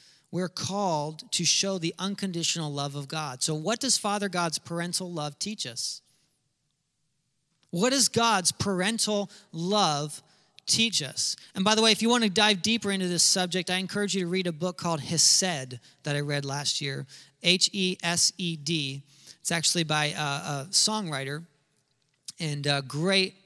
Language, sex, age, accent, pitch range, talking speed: English, male, 40-59, American, 145-185 Hz, 155 wpm